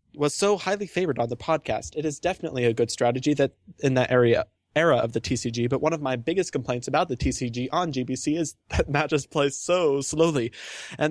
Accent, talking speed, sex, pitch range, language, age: American, 210 wpm, male, 130-155 Hz, English, 20-39